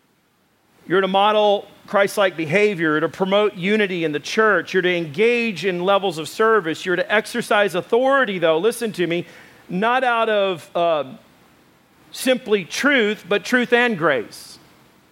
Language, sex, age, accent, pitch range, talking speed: English, male, 40-59, American, 175-220 Hz, 145 wpm